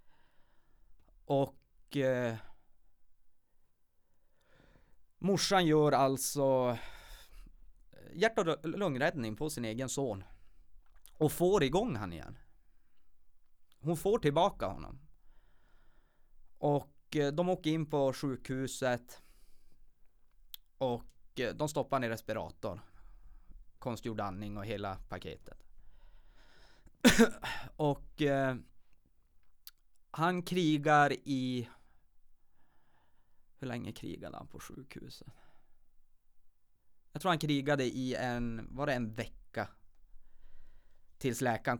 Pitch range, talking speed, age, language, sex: 95-140 Hz, 90 wpm, 30-49, Swedish, male